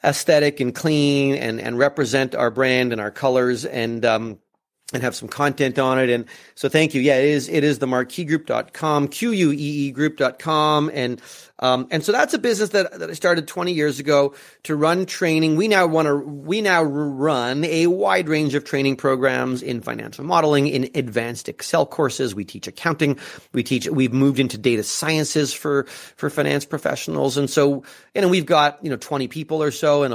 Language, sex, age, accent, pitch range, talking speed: English, male, 30-49, American, 130-155 Hz, 195 wpm